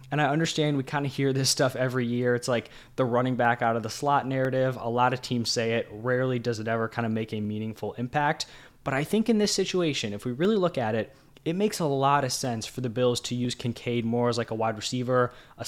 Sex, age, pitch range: male, 10-29, 120-145 Hz